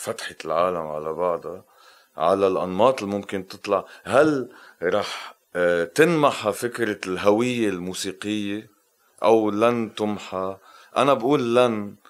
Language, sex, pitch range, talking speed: Arabic, male, 95-120 Hz, 105 wpm